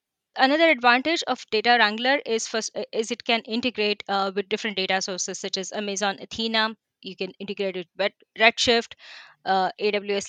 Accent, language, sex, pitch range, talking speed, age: Indian, English, female, 205-255 Hz, 165 wpm, 20-39